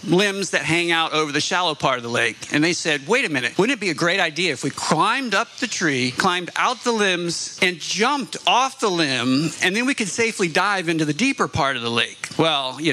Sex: male